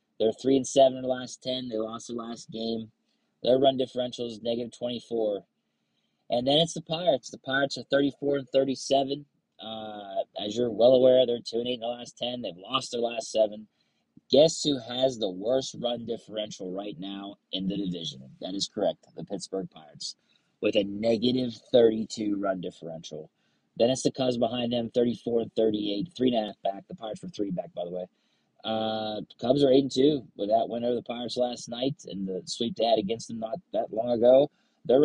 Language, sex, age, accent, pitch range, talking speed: English, male, 30-49, American, 110-135 Hz, 190 wpm